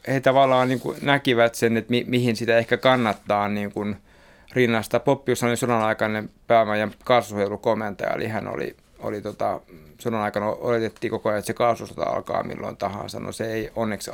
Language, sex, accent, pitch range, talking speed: Finnish, male, native, 110-125 Hz, 160 wpm